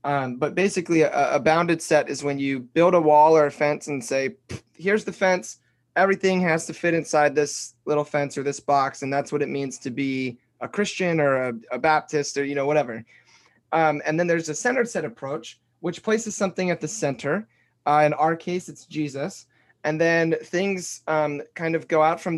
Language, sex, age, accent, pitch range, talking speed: English, male, 20-39, American, 140-170 Hz, 210 wpm